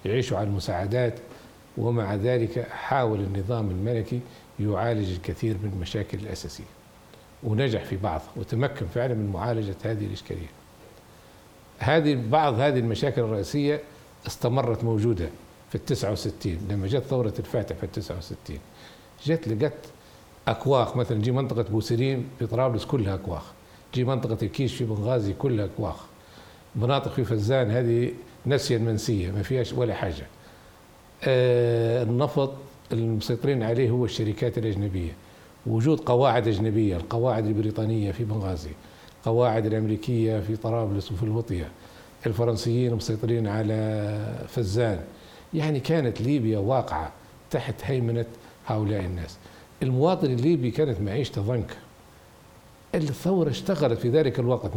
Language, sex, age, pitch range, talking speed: Arabic, male, 60-79, 105-125 Hz, 120 wpm